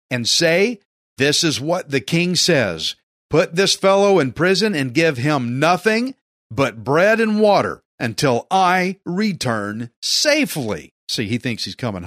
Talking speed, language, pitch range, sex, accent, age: 150 wpm, English, 120-180 Hz, male, American, 50-69